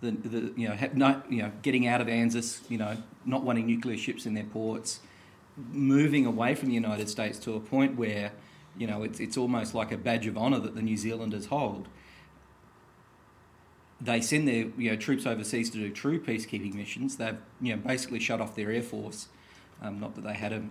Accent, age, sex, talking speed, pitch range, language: Australian, 40-59, male, 210 wpm, 110-125 Hz, English